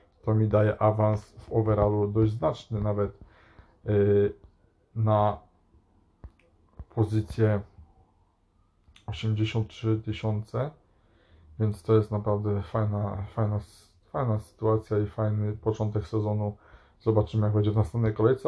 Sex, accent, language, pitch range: male, native, Polish, 105-115 Hz